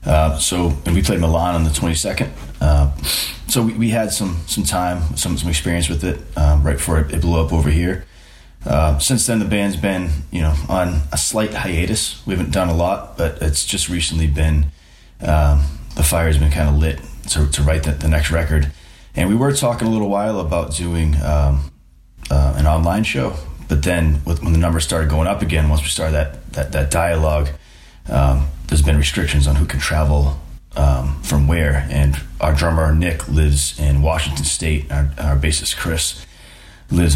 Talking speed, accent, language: 195 wpm, American, English